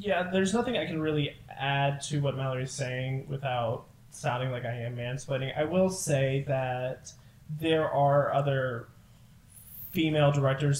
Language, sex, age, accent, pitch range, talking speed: English, male, 20-39, American, 125-150 Hz, 145 wpm